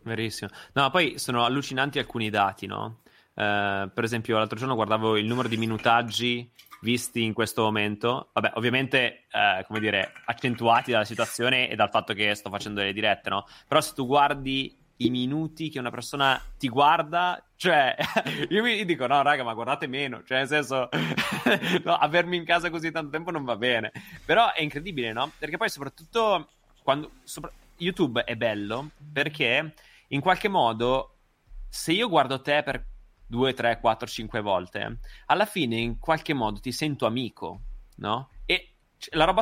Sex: male